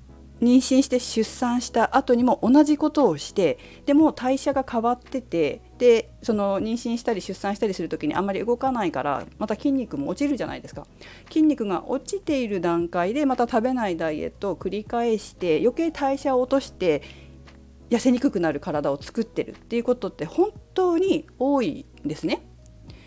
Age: 40-59